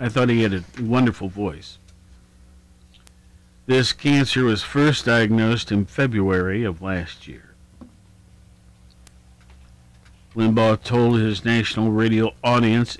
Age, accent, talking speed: 50-69, American, 105 wpm